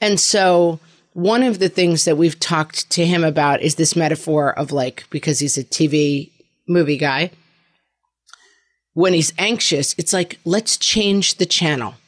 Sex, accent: female, American